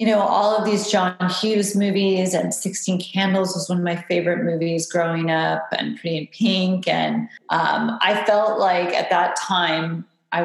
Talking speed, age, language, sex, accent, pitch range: 185 wpm, 30-49, English, female, American, 155-200 Hz